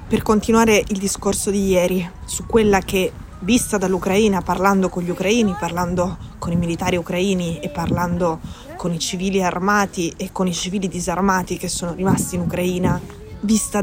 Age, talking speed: 20-39, 160 wpm